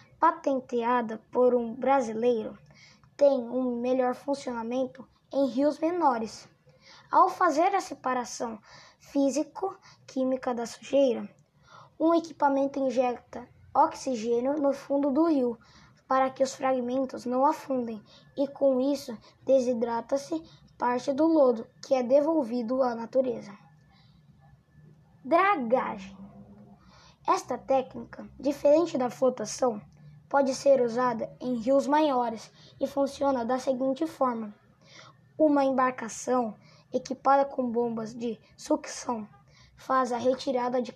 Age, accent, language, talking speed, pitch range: 10-29, Brazilian, Portuguese, 105 wpm, 245-280 Hz